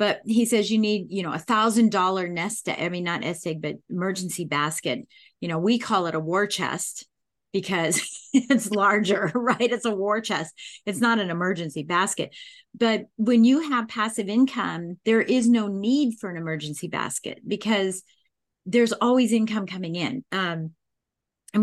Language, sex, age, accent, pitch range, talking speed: English, female, 40-59, American, 170-220 Hz, 165 wpm